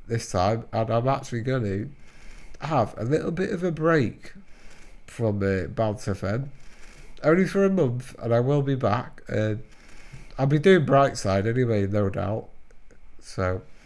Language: English